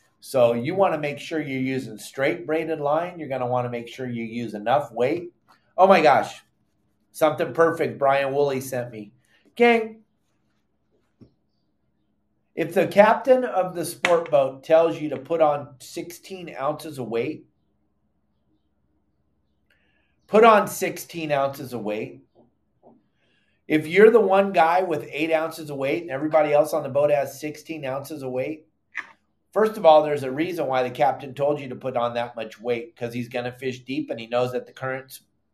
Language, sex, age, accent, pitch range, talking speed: English, male, 30-49, American, 125-165 Hz, 175 wpm